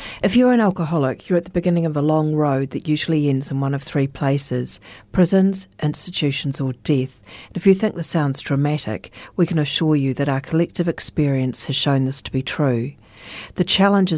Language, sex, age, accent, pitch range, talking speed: English, female, 50-69, Australian, 130-150 Hz, 200 wpm